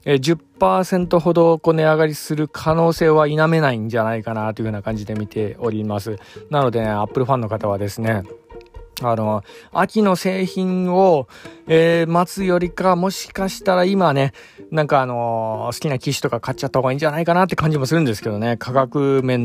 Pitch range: 110-160 Hz